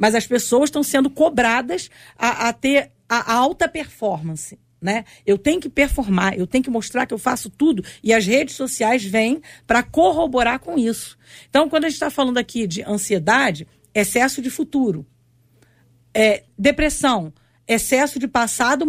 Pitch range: 200-270 Hz